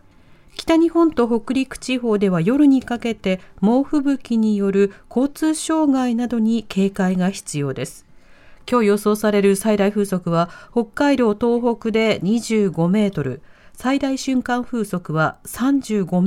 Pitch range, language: 185-255 Hz, Japanese